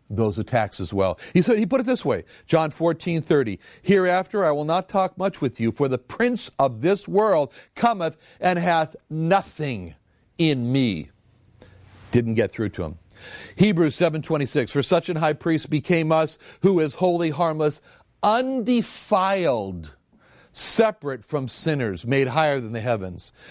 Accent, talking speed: American, 160 wpm